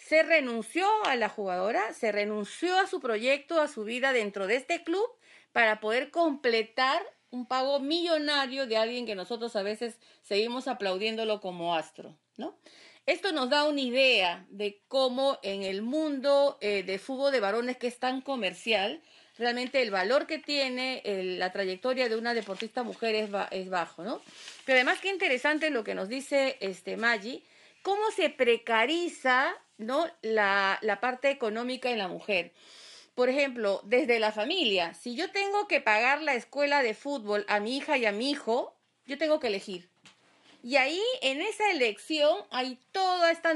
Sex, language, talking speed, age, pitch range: female, Spanish, 165 wpm, 40-59, 225-290 Hz